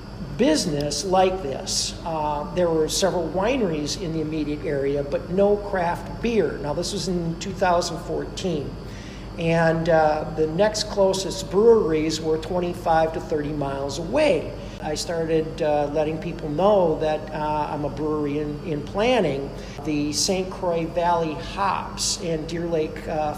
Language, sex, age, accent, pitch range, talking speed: English, male, 50-69, American, 155-195 Hz, 145 wpm